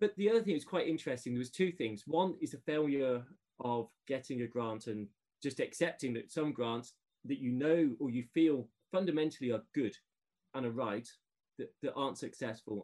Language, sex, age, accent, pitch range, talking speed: English, male, 30-49, British, 120-170 Hz, 190 wpm